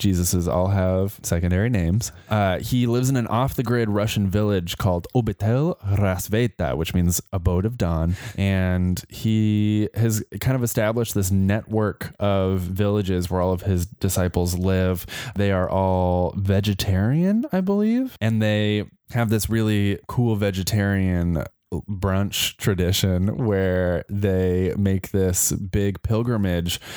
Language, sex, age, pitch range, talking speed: English, male, 20-39, 90-110 Hz, 130 wpm